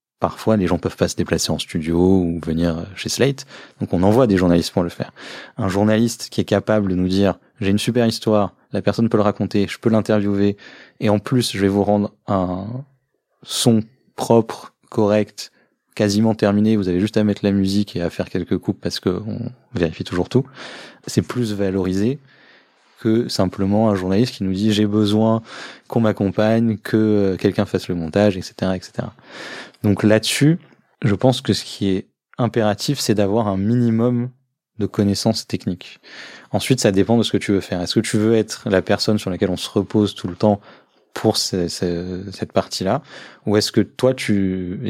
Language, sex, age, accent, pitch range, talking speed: French, male, 20-39, French, 95-110 Hz, 195 wpm